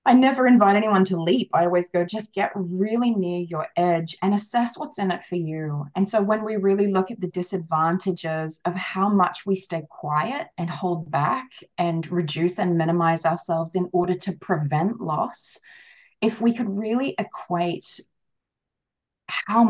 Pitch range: 170-200 Hz